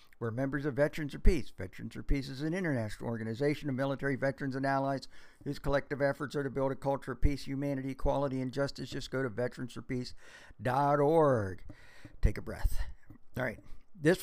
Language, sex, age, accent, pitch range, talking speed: English, male, 50-69, American, 125-145 Hz, 175 wpm